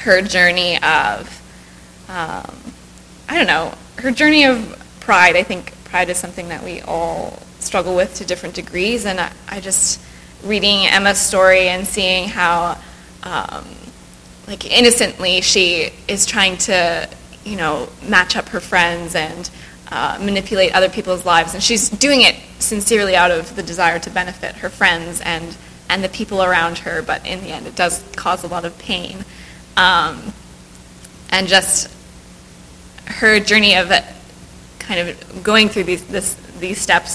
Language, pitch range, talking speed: English, 170-200 Hz, 155 wpm